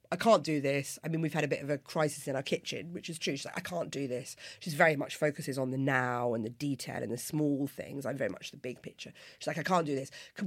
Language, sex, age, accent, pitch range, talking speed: English, female, 40-59, British, 140-185 Hz, 300 wpm